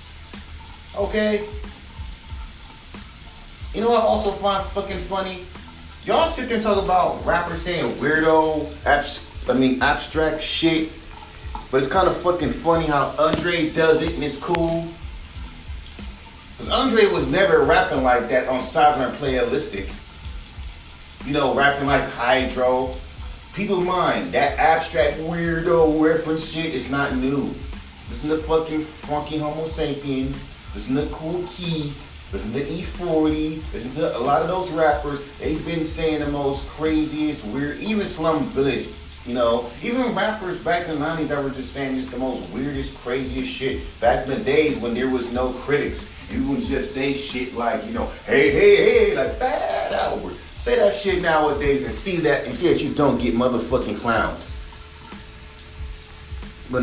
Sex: male